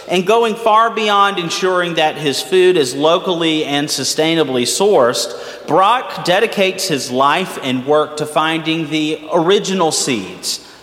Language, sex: English, male